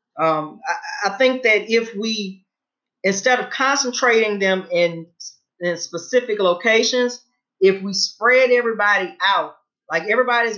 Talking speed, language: 125 wpm, English